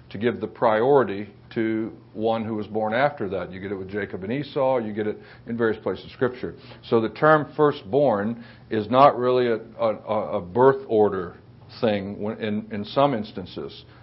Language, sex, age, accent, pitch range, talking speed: English, male, 60-79, American, 105-135 Hz, 190 wpm